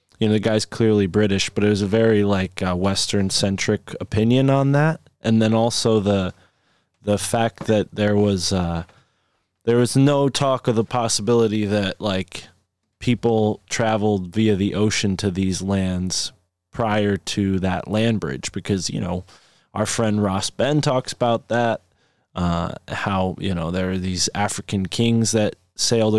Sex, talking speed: male, 165 wpm